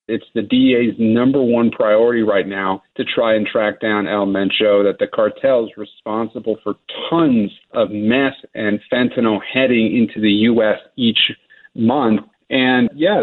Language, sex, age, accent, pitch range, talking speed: English, male, 40-59, American, 110-130 Hz, 155 wpm